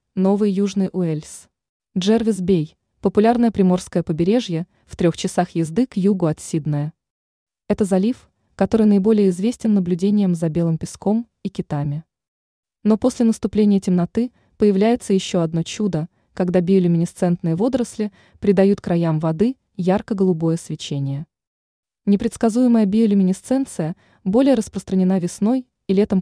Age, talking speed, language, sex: 20-39, 110 wpm, Russian, female